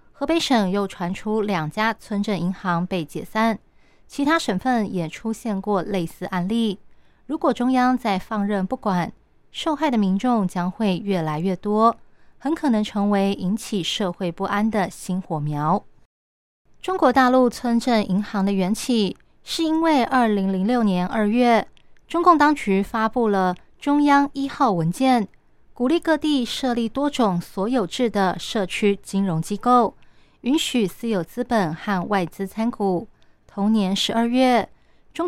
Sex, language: female, Chinese